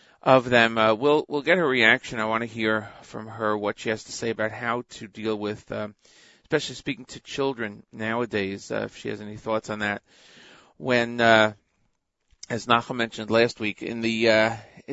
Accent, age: American, 40-59